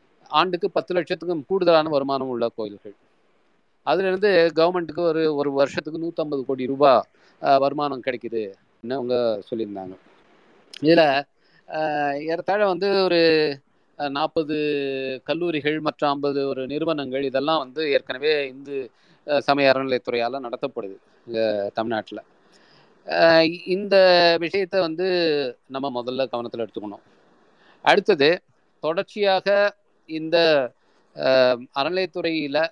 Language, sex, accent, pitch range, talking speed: Tamil, male, native, 135-165 Hz, 90 wpm